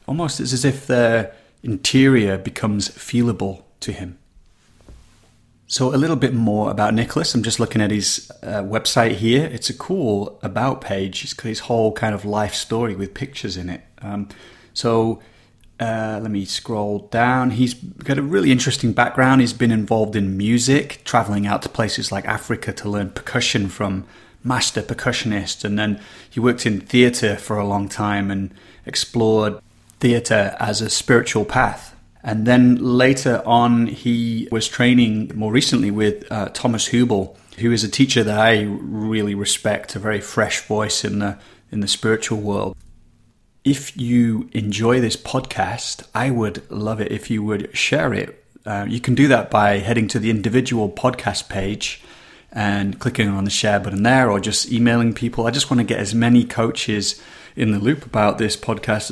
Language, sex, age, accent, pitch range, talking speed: English, male, 30-49, British, 105-120 Hz, 175 wpm